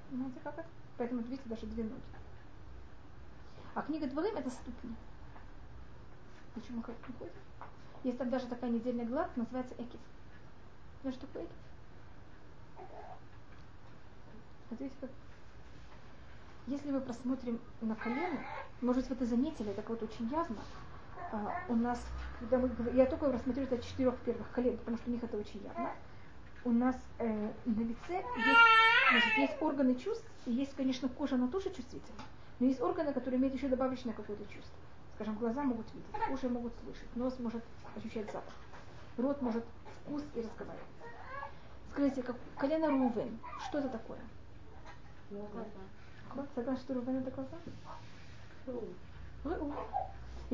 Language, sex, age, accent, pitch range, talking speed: Russian, female, 20-39, native, 230-275 Hz, 140 wpm